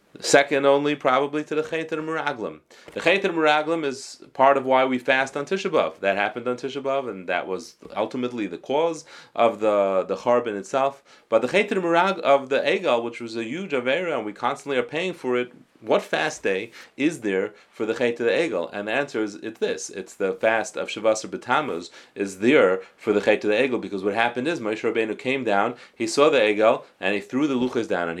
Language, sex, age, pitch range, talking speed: English, male, 30-49, 110-150 Hz, 210 wpm